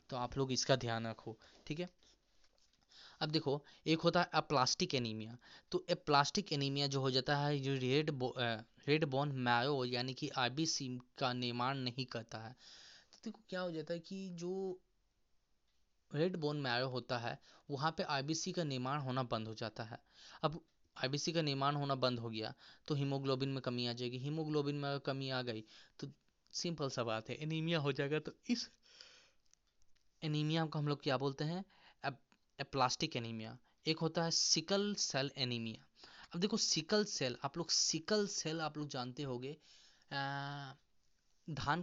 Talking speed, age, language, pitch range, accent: 125 wpm, 20-39, Hindi, 125-160 Hz, native